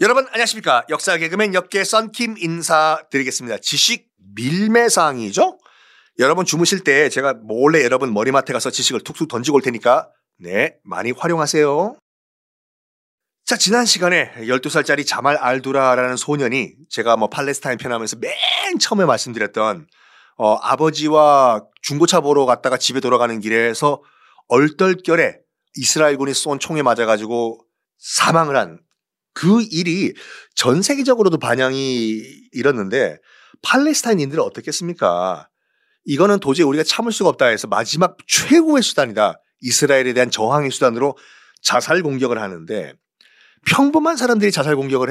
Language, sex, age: Korean, male, 30-49